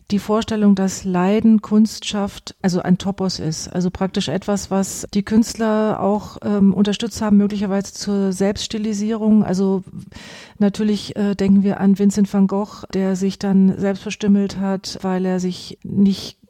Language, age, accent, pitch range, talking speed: German, 40-59, German, 190-210 Hz, 155 wpm